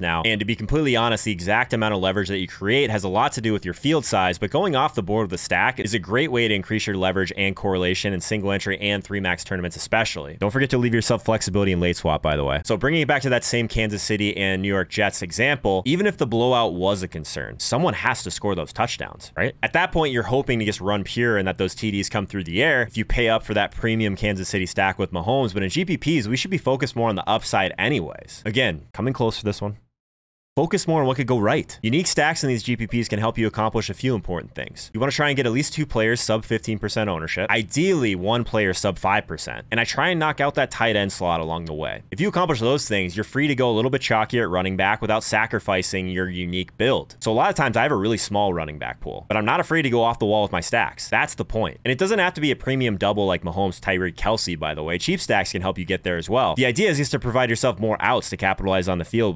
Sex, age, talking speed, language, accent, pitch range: male, 20-39, 280 wpm, English, American, 95-125 Hz